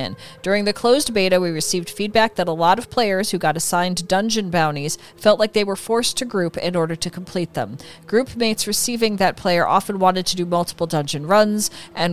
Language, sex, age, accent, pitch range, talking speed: English, female, 40-59, American, 165-200 Hz, 205 wpm